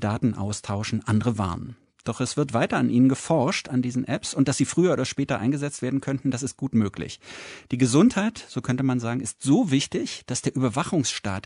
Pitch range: 110-140 Hz